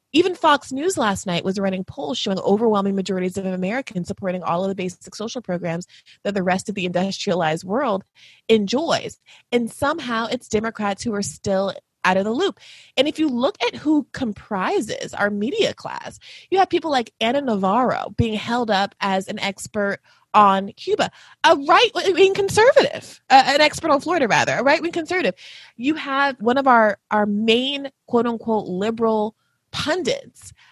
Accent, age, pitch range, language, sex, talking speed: American, 20-39, 190-270 Hz, English, female, 170 wpm